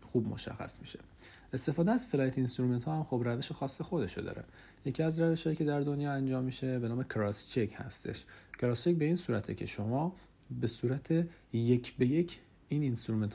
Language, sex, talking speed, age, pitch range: Persian, male, 195 wpm, 40-59, 105-135 Hz